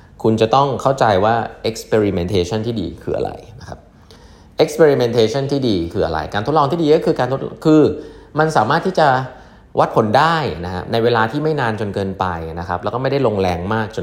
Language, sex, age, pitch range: Thai, male, 20-39, 95-140 Hz